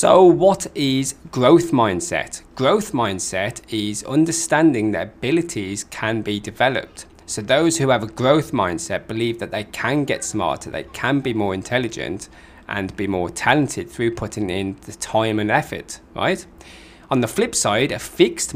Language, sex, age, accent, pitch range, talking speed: English, male, 20-39, British, 95-130 Hz, 160 wpm